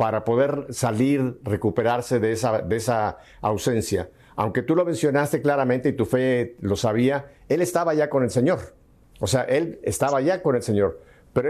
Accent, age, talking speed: Mexican, 50-69, 175 wpm